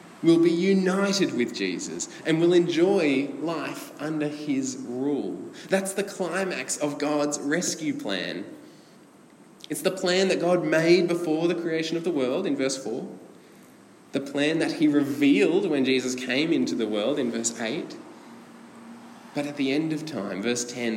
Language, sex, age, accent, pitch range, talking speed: English, male, 20-39, Australian, 125-175 Hz, 160 wpm